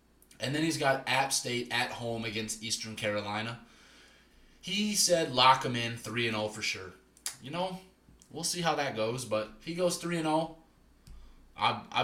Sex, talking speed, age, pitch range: male, 165 wpm, 20-39, 110-135 Hz